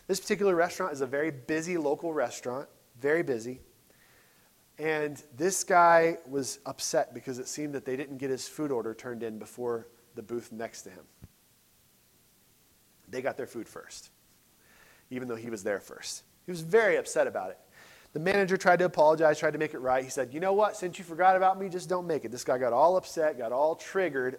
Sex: male